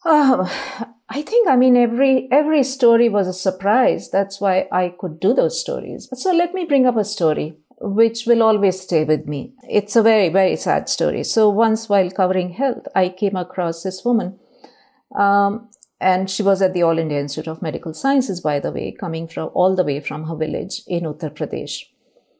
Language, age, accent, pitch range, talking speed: English, 50-69, Indian, 175-235 Hz, 195 wpm